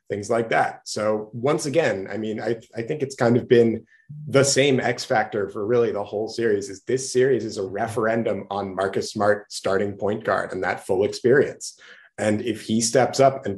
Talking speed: 205 wpm